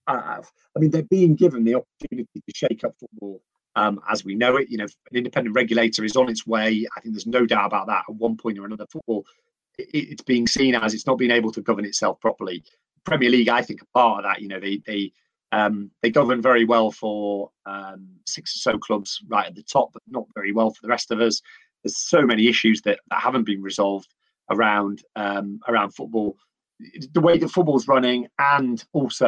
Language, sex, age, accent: English, male, 30-49, British